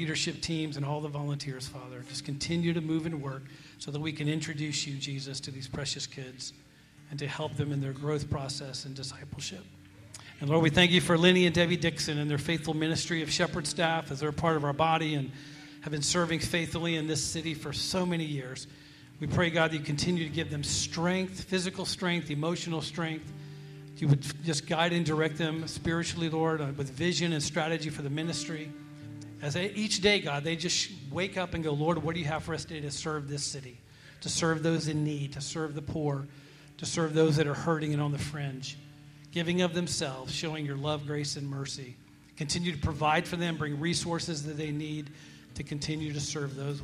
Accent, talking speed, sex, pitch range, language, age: American, 215 wpm, male, 145-165 Hz, English, 40-59